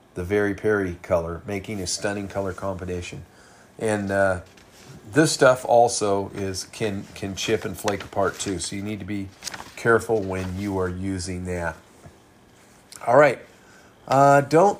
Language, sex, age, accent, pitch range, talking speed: English, male, 40-59, American, 105-135 Hz, 150 wpm